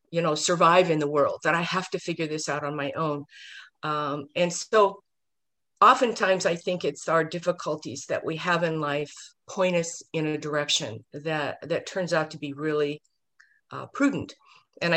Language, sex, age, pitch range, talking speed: English, female, 50-69, 155-195 Hz, 180 wpm